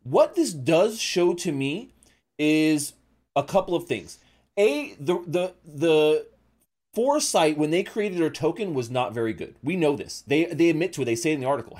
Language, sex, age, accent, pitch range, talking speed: English, male, 30-49, American, 125-170 Hz, 195 wpm